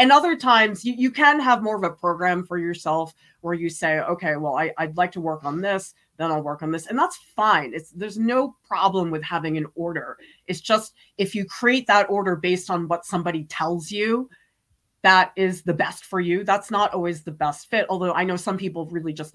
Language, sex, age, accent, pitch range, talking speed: English, female, 30-49, American, 165-235 Hz, 220 wpm